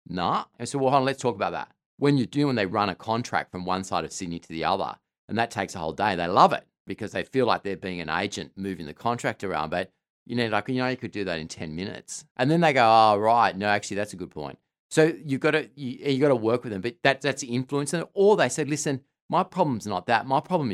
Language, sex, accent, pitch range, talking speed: English, male, Australian, 100-140 Hz, 290 wpm